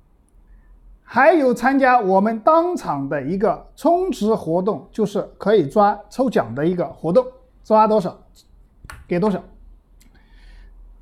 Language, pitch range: Chinese, 170-255 Hz